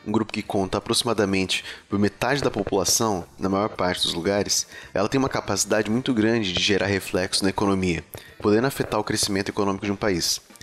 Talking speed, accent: 185 wpm, Brazilian